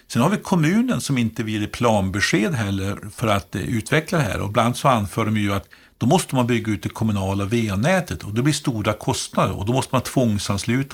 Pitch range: 100-130 Hz